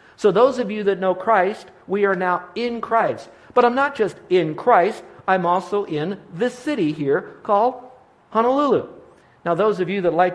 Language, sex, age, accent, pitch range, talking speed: English, male, 50-69, American, 165-210 Hz, 185 wpm